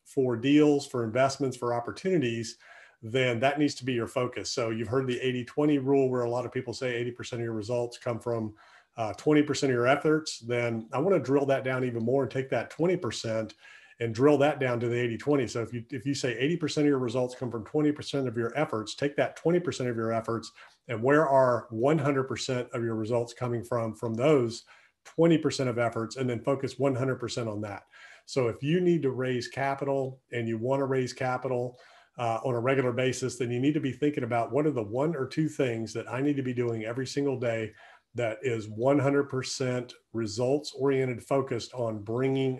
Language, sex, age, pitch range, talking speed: English, male, 40-59, 115-140 Hz, 205 wpm